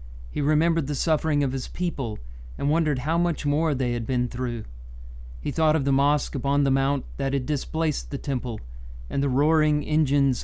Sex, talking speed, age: male, 190 wpm, 40-59